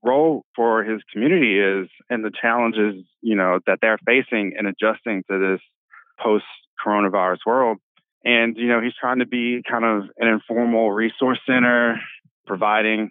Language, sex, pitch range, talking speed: English, male, 105-120 Hz, 150 wpm